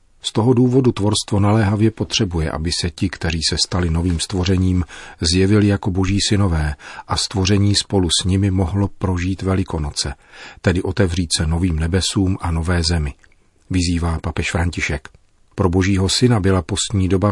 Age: 40-59